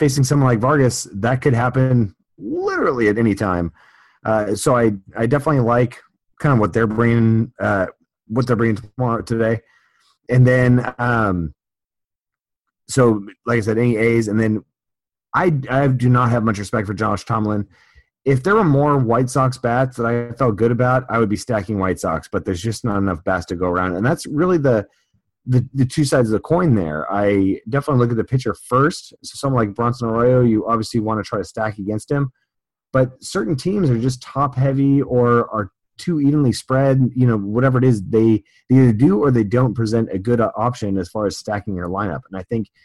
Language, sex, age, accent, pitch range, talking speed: English, male, 30-49, American, 105-130 Hz, 205 wpm